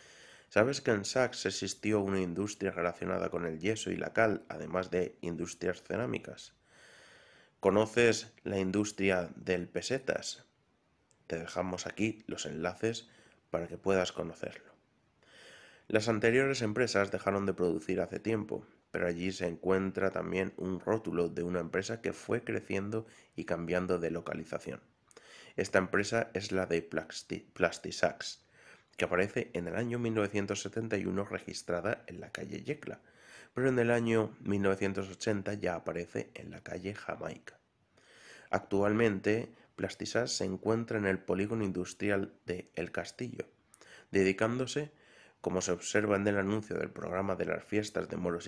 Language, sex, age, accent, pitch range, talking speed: Spanish, male, 30-49, Spanish, 90-110 Hz, 135 wpm